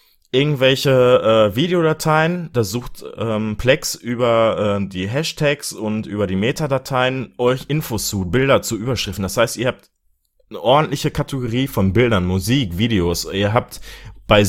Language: German